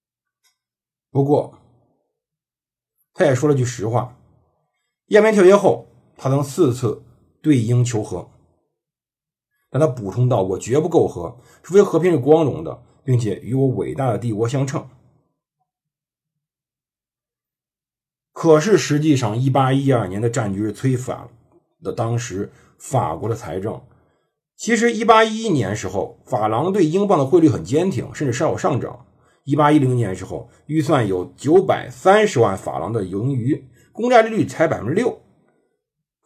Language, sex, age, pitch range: Chinese, male, 50-69, 120-155 Hz